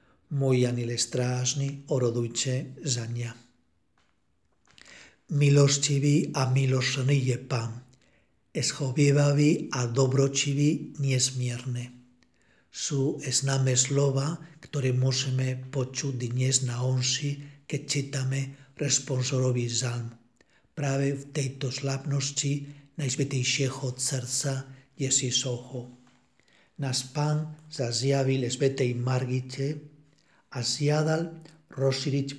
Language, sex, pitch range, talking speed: Czech, male, 125-145 Hz, 80 wpm